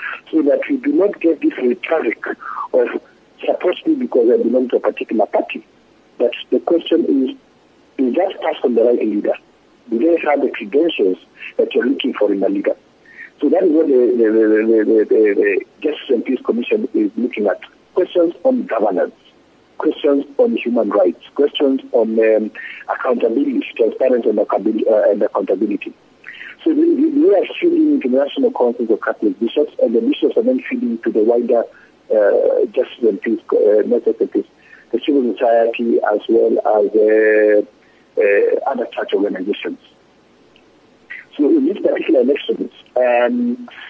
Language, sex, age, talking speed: English, male, 50-69, 155 wpm